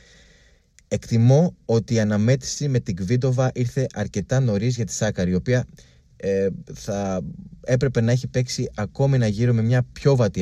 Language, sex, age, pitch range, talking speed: Greek, male, 20-39, 90-125 Hz, 160 wpm